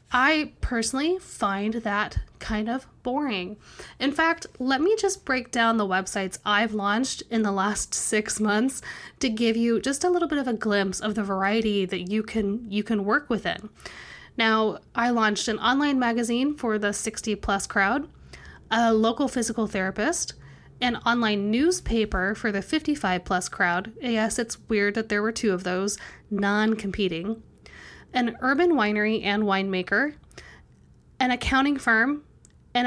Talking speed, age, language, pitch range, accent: 155 wpm, 10-29, English, 205-265 Hz, American